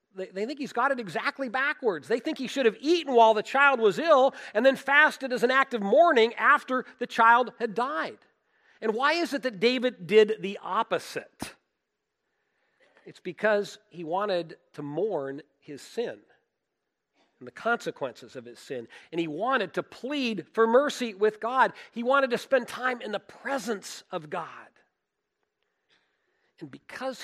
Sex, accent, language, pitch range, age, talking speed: male, American, English, 170-265 Hz, 40-59, 165 wpm